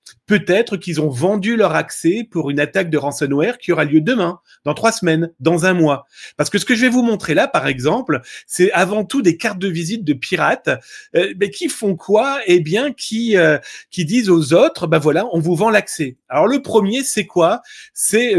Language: French